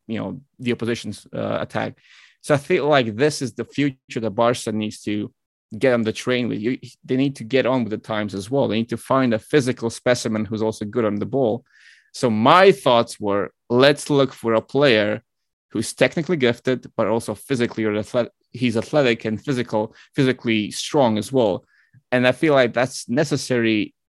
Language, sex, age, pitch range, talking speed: English, male, 30-49, 110-130 Hz, 195 wpm